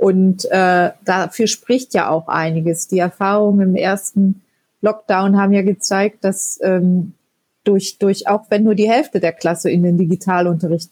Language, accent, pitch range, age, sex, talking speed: German, German, 180-210 Hz, 30-49, female, 160 wpm